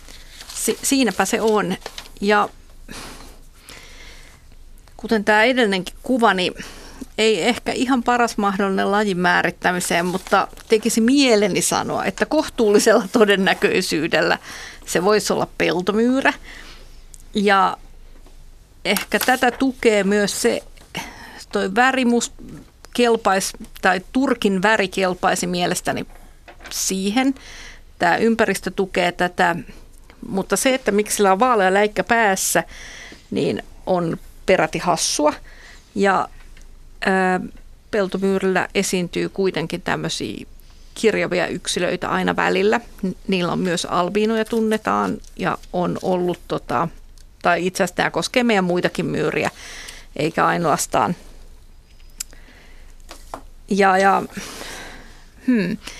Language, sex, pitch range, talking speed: Finnish, female, 185-230 Hz, 95 wpm